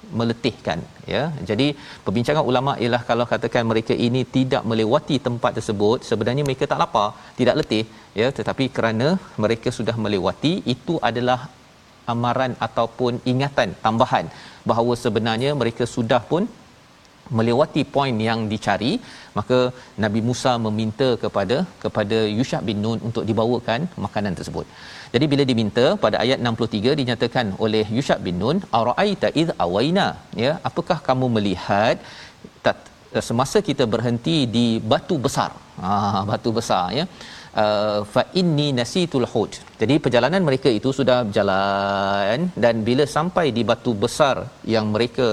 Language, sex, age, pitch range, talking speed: Malayalam, male, 40-59, 110-130 Hz, 135 wpm